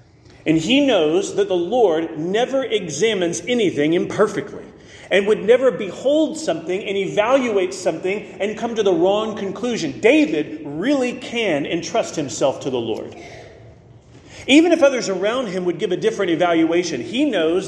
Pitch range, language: 165-235 Hz, English